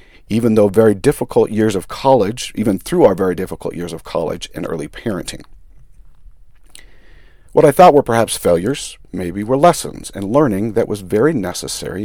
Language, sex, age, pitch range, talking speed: English, male, 50-69, 100-130 Hz, 165 wpm